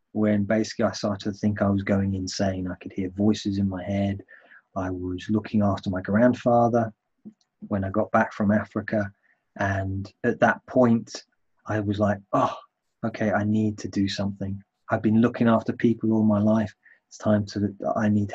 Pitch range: 100-115 Hz